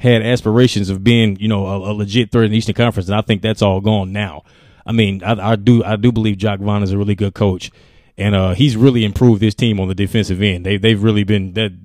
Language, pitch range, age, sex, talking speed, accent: English, 100-115 Hz, 20-39, male, 265 wpm, American